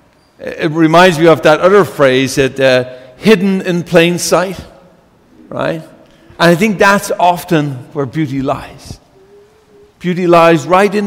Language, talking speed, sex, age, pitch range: English, 140 wpm, male, 50-69, 160-215 Hz